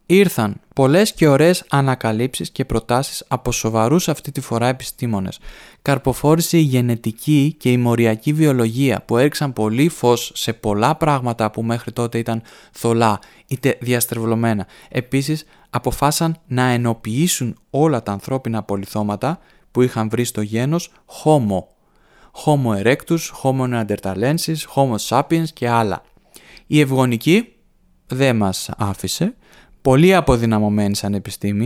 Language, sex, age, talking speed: Greek, male, 20-39, 120 wpm